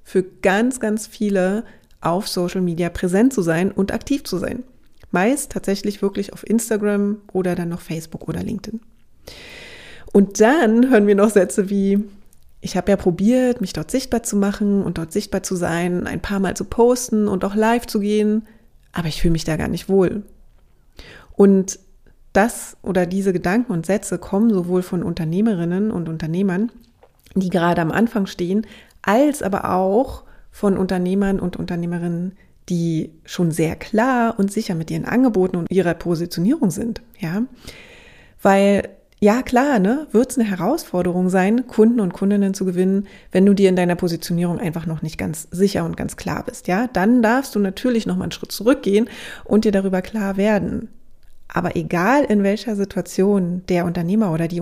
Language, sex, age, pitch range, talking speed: German, female, 30-49, 180-220 Hz, 170 wpm